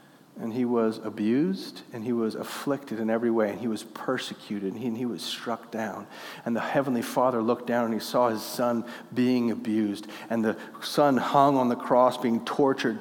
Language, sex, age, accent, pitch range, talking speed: English, male, 40-59, American, 115-130 Hz, 200 wpm